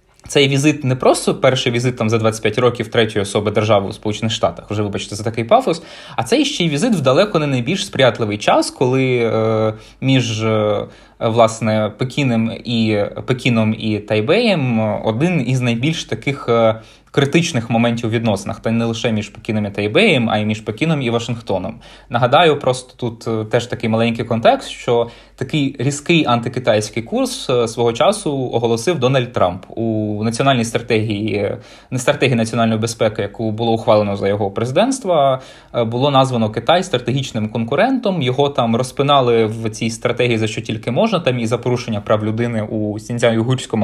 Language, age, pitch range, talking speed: Ukrainian, 20-39, 110-130 Hz, 155 wpm